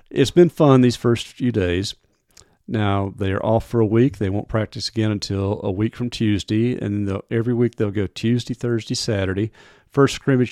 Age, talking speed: 40-59, 185 wpm